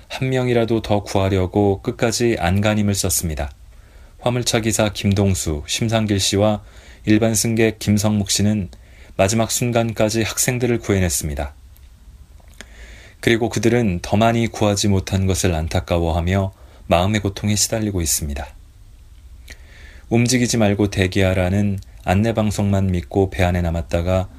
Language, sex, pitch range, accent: Korean, male, 85-110 Hz, native